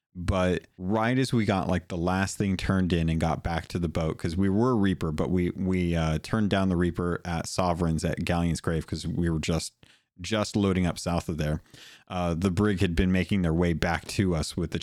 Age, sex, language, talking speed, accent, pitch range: 30-49, male, English, 230 wpm, American, 85-105 Hz